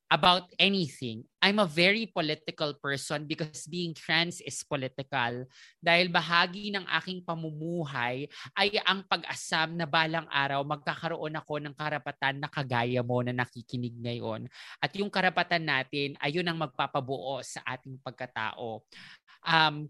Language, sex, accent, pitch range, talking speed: English, male, Filipino, 140-180 Hz, 135 wpm